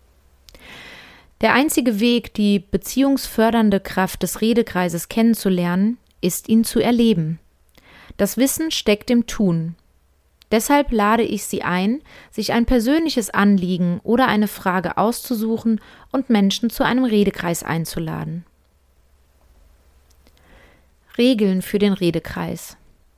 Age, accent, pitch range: 30-49, German, 170-235 Hz